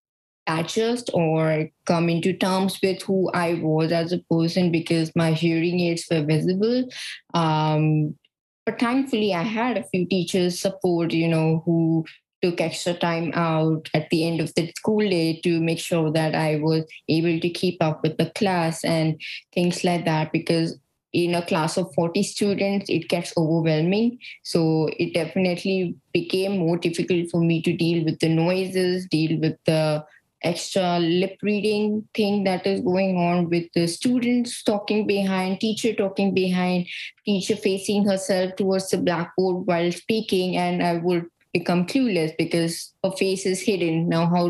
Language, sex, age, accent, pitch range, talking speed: English, female, 20-39, Indian, 165-195 Hz, 160 wpm